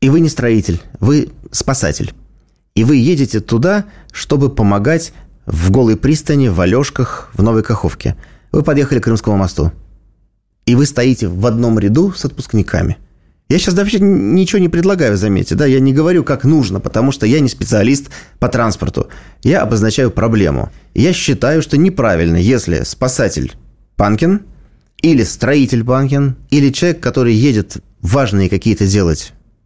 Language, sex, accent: Russian, male, native